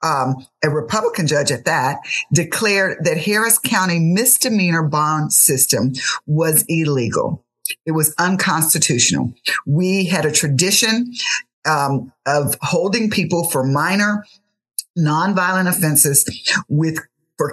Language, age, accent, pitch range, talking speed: English, 50-69, American, 150-185 Hz, 110 wpm